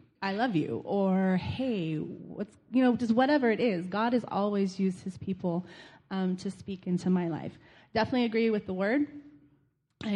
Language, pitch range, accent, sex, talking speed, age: English, 180-210 Hz, American, female, 175 wpm, 30-49